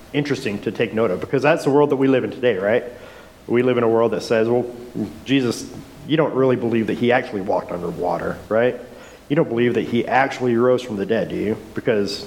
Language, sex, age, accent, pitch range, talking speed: English, male, 40-59, American, 115-135 Hz, 235 wpm